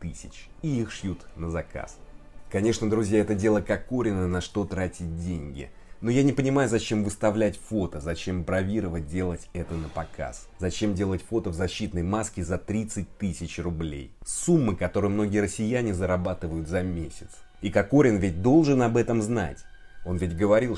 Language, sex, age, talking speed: Russian, male, 30-49, 160 wpm